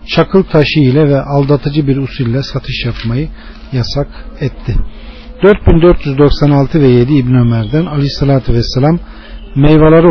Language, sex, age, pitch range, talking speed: Turkish, male, 40-59, 125-160 Hz, 130 wpm